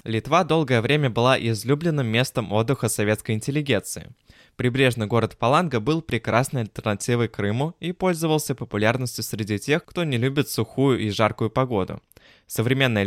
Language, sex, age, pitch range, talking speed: Russian, male, 20-39, 110-135 Hz, 135 wpm